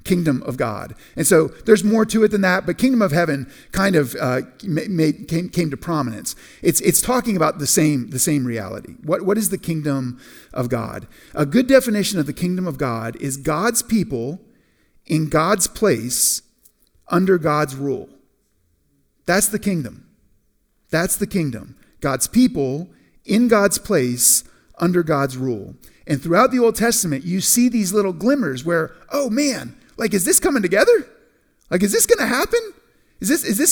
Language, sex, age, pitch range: English, male, 40-59, 145-225 Hz